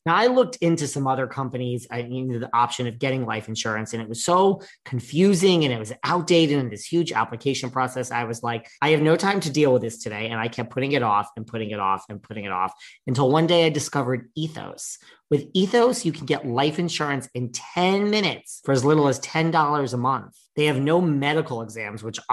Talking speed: 225 wpm